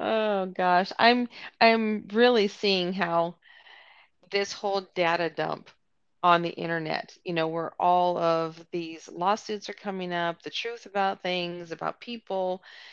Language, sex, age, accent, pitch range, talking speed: English, female, 40-59, American, 180-260 Hz, 140 wpm